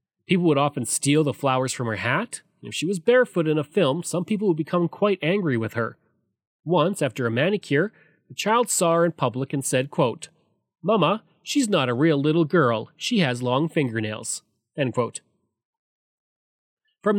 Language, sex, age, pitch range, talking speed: English, male, 30-49, 130-190 Hz, 180 wpm